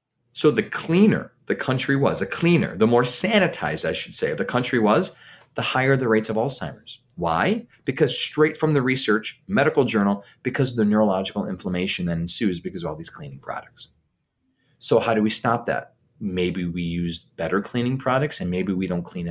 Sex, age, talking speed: male, 30-49, 195 wpm